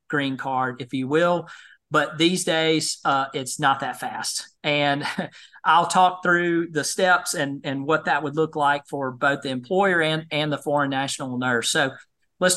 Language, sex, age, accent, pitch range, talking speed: English, male, 40-59, American, 135-155 Hz, 180 wpm